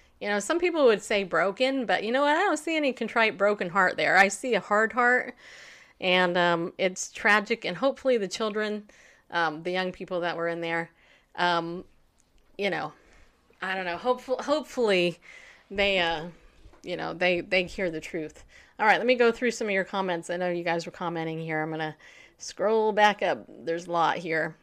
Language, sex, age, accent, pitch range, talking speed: English, female, 30-49, American, 175-225 Hz, 205 wpm